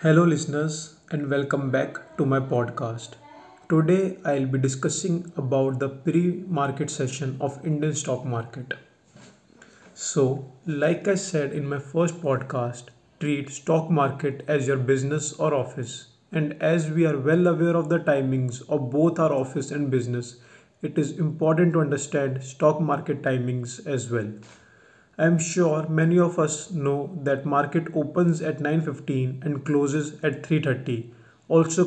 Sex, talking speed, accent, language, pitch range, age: male, 155 wpm, Indian, English, 135-160 Hz, 30-49